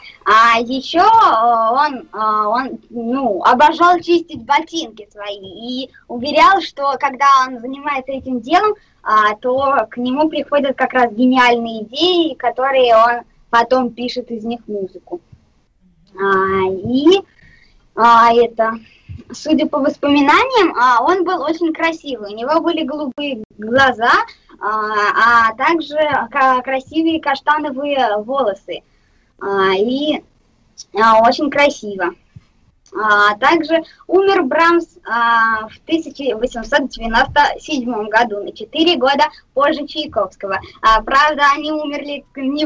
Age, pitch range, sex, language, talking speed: 20-39, 230-300 Hz, male, Russian, 105 wpm